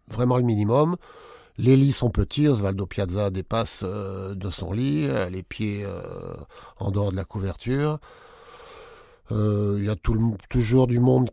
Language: French